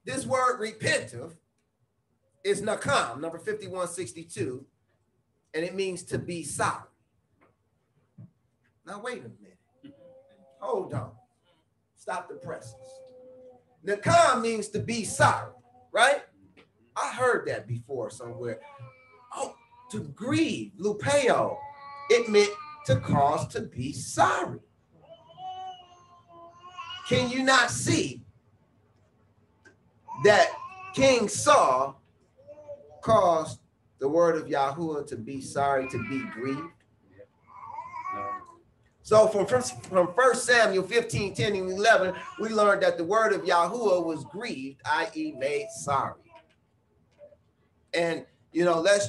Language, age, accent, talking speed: English, 30-49, American, 110 wpm